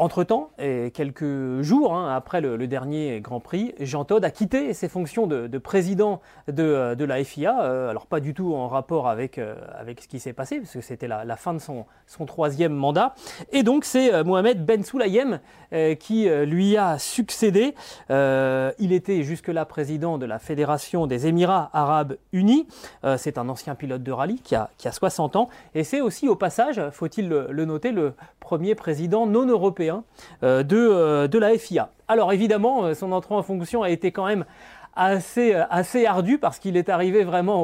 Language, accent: French, French